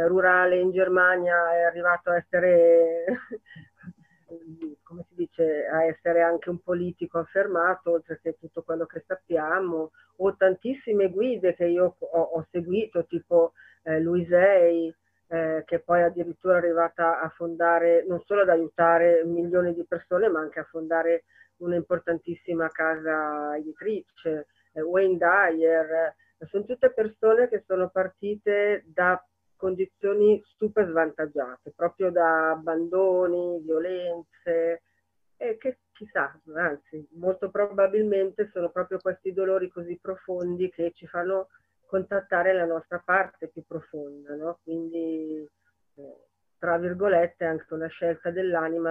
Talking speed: 125 wpm